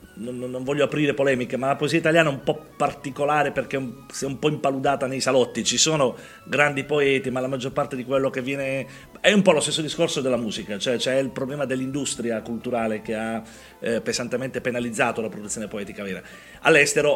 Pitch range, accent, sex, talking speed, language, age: 125-150 Hz, native, male, 190 wpm, Italian, 40-59